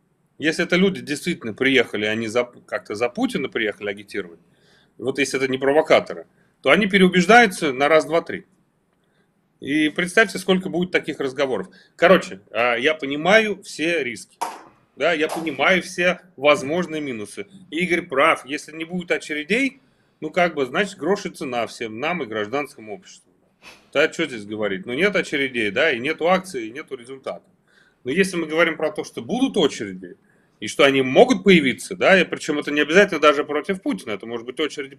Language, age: Russian, 30-49